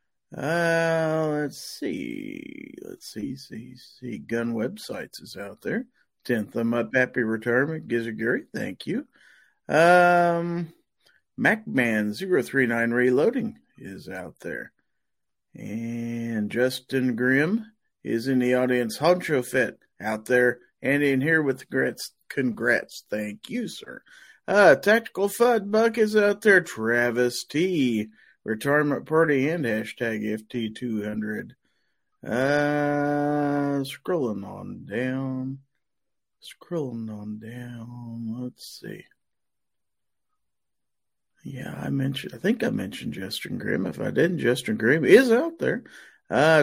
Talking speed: 120 wpm